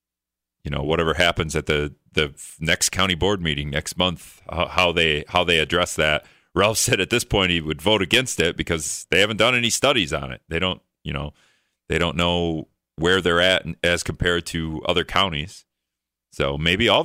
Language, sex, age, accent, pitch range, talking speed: English, male, 40-59, American, 75-105 Hz, 195 wpm